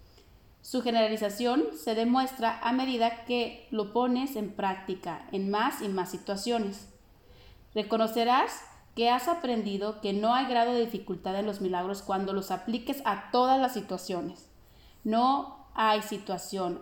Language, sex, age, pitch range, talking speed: Spanish, female, 30-49, 195-240 Hz, 140 wpm